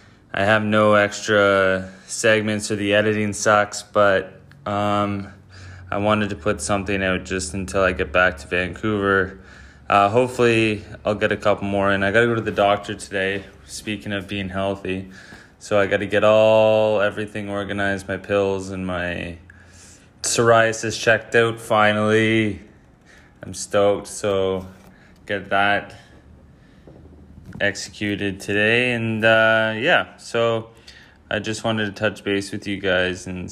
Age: 20-39